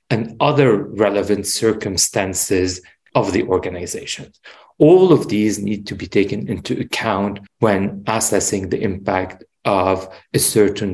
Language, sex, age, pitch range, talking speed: English, male, 40-59, 95-120 Hz, 125 wpm